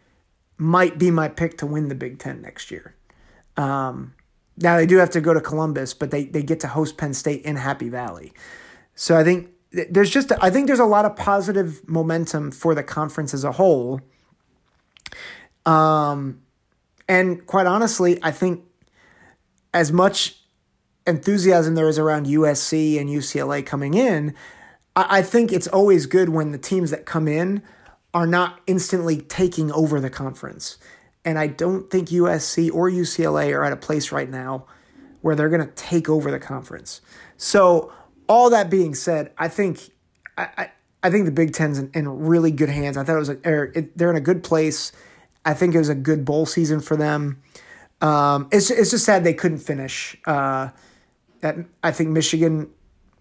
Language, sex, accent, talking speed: English, male, American, 180 wpm